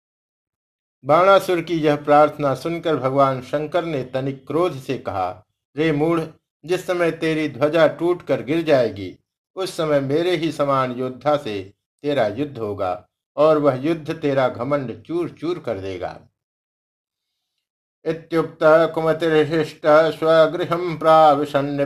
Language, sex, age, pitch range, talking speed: Hindi, male, 60-79, 125-160 Hz, 110 wpm